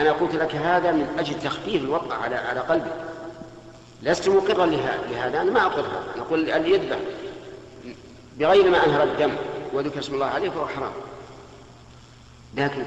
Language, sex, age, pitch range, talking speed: Arabic, male, 50-69, 130-195 Hz, 145 wpm